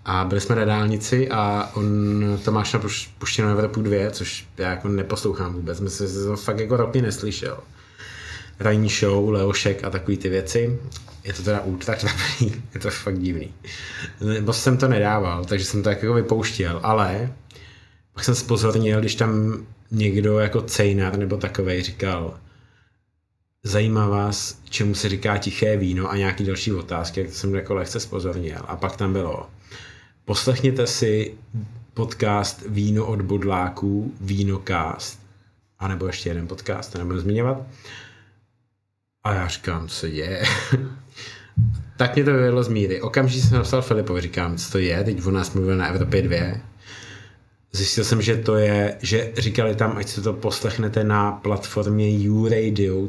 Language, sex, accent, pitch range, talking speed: Czech, male, native, 95-110 Hz, 155 wpm